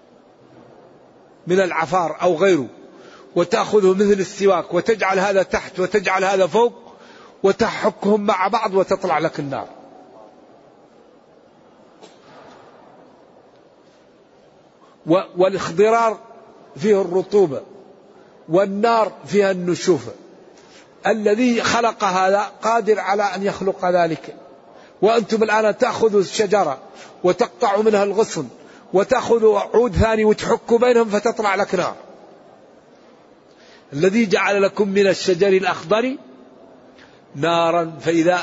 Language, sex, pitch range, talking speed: Arabic, male, 175-215 Hz, 85 wpm